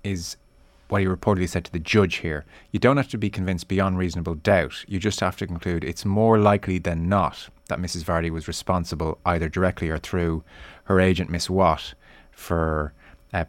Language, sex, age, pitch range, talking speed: English, male, 30-49, 80-95 Hz, 190 wpm